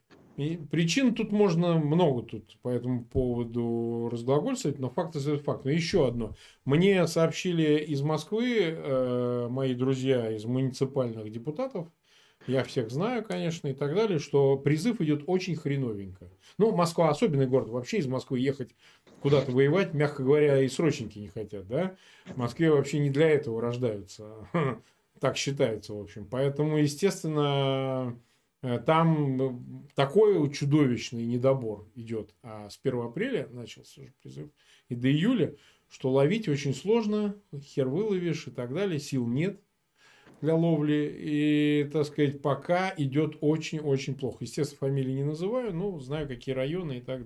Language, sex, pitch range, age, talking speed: Russian, male, 125-165 Hz, 20-39, 145 wpm